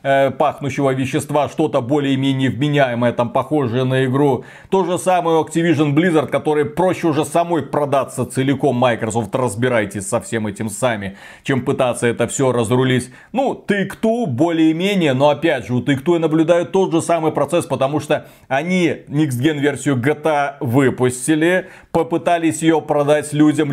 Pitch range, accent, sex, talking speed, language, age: 135-180 Hz, native, male, 140 wpm, Russian, 30-49